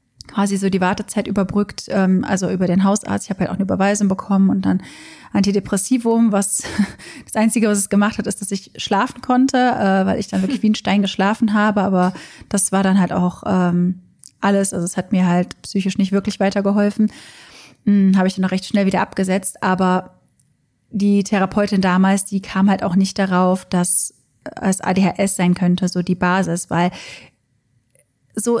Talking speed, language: 175 wpm, German